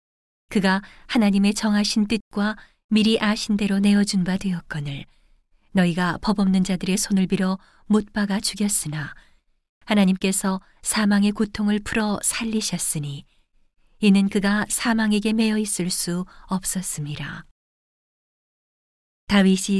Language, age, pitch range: Korean, 40-59, 175-210 Hz